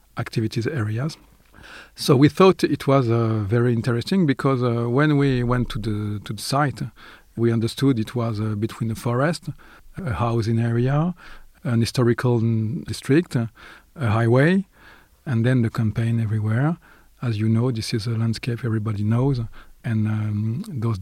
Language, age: French, 40-59